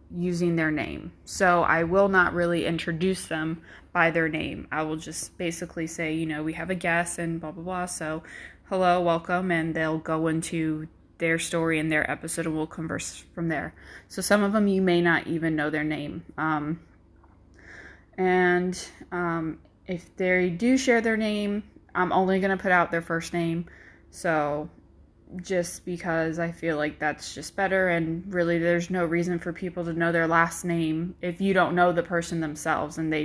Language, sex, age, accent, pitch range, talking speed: English, female, 20-39, American, 160-185 Hz, 190 wpm